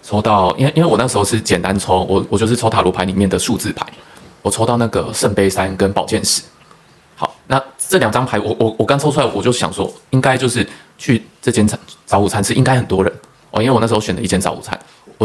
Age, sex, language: 20-39, male, Chinese